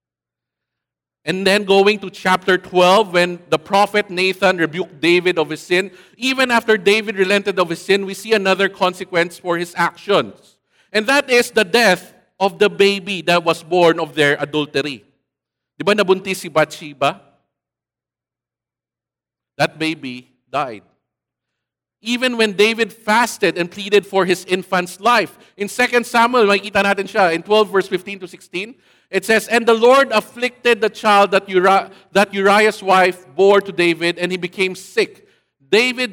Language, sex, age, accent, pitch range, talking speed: English, male, 50-69, Filipino, 170-215 Hz, 150 wpm